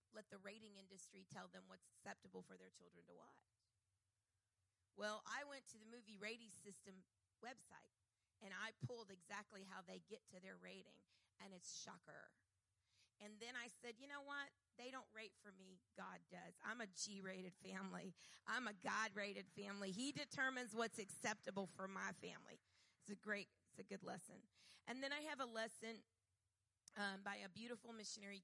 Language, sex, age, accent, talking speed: English, female, 40-59, American, 175 wpm